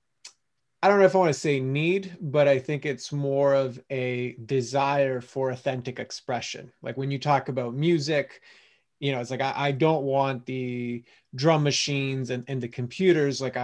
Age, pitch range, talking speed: 30-49, 125-145 Hz, 185 wpm